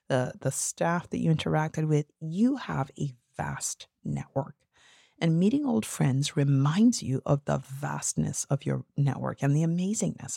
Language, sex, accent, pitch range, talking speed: English, female, American, 130-160 Hz, 155 wpm